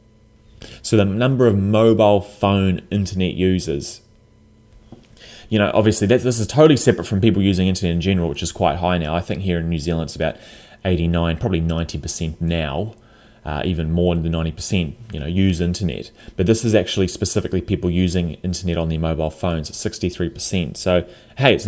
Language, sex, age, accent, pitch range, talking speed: English, male, 20-39, Australian, 90-110 Hz, 195 wpm